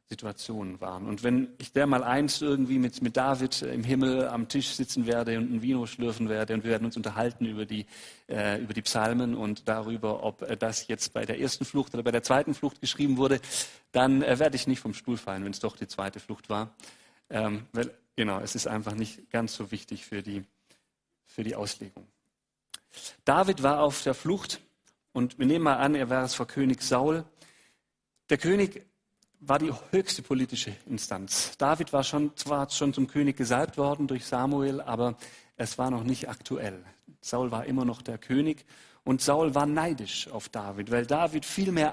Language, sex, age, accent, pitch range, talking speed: German, male, 40-59, German, 115-140 Hz, 195 wpm